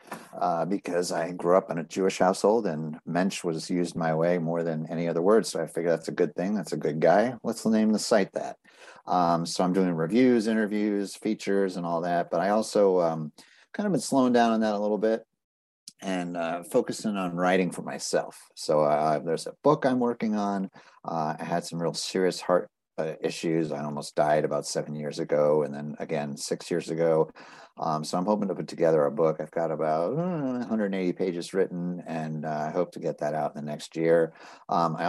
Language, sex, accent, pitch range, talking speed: English, male, American, 80-105 Hz, 215 wpm